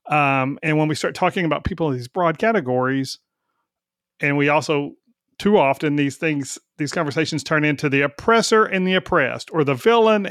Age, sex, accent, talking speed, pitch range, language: 40-59, male, American, 180 wpm, 145-180 Hz, English